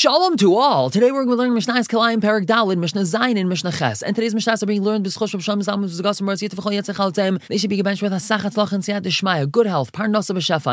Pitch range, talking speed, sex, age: 140-190 Hz, 230 wpm, male, 20-39